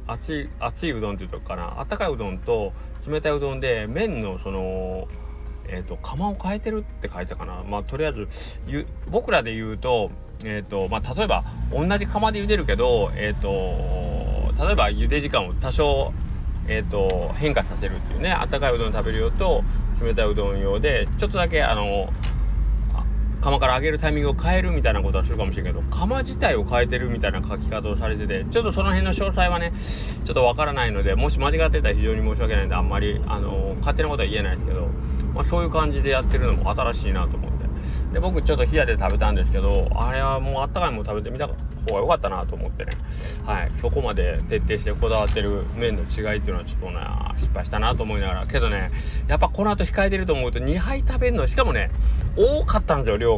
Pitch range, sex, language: 65-110 Hz, male, Japanese